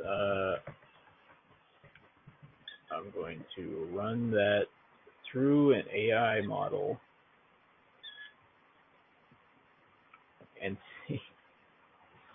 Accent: American